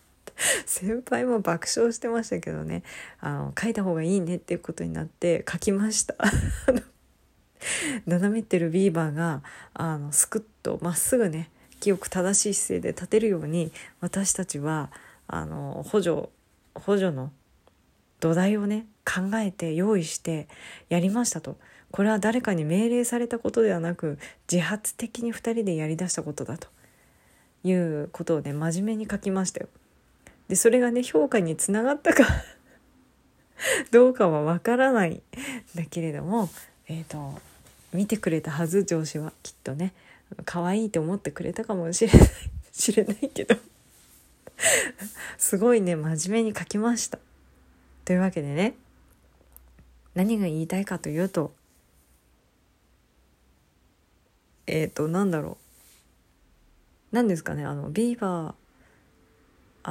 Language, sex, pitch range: Japanese, female, 155-215 Hz